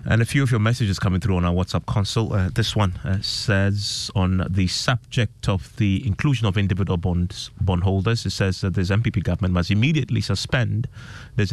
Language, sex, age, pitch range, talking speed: English, male, 30-49, 90-115 Hz, 195 wpm